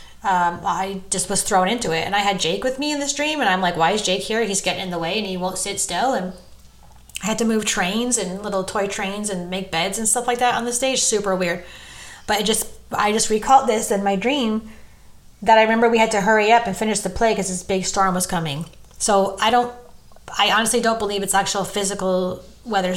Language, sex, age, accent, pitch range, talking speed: English, female, 30-49, American, 180-220 Hz, 245 wpm